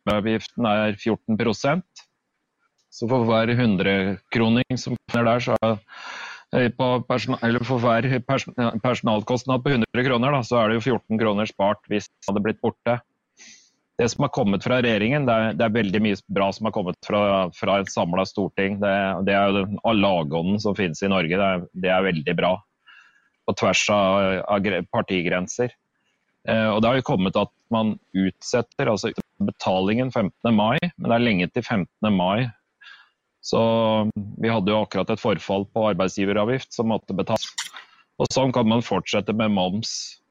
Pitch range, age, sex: 100-120 Hz, 30-49, male